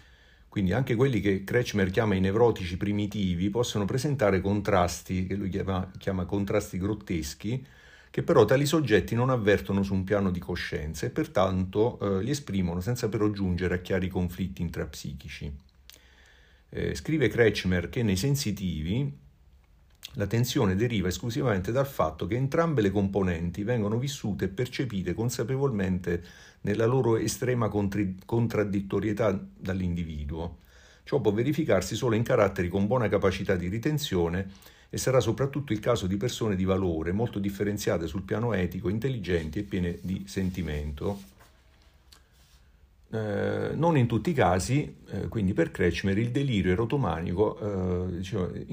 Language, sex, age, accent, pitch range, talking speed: Italian, male, 50-69, native, 90-110 Hz, 135 wpm